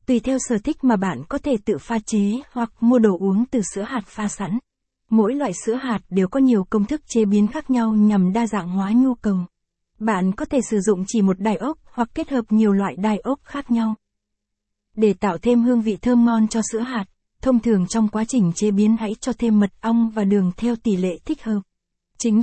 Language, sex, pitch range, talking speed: Vietnamese, female, 200-240 Hz, 235 wpm